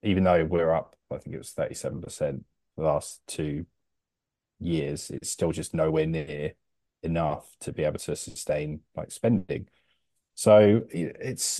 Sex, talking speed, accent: male, 150 wpm, British